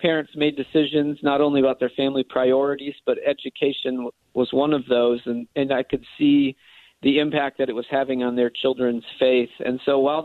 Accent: American